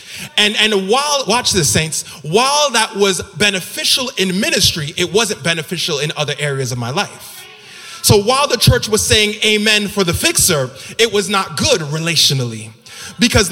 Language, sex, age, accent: English, male, 20-39, American